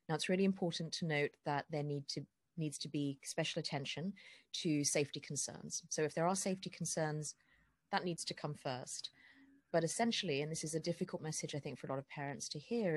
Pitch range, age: 145-185 Hz, 30-49